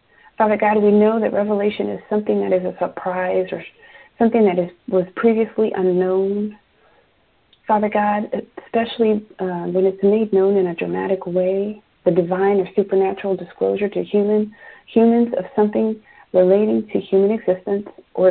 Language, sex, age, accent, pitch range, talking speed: English, female, 40-59, American, 190-225 Hz, 150 wpm